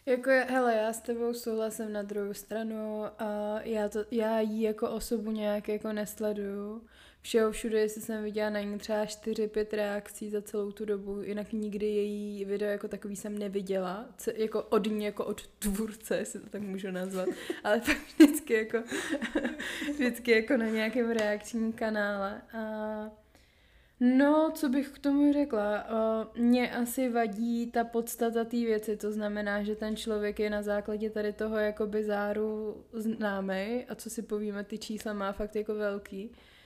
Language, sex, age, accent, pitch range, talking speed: Czech, female, 20-39, native, 210-230 Hz, 165 wpm